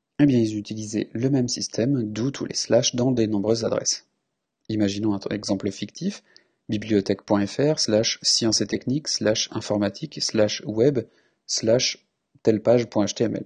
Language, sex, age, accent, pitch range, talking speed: French, male, 30-49, French, 105-130 Hz, 90 wpm